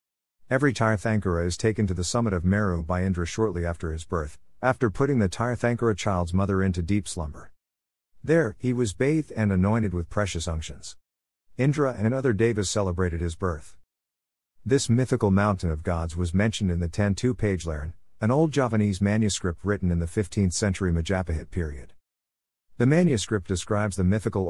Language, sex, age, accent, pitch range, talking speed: English, male, 50-69, American, 85-110 Hz, 165 wpm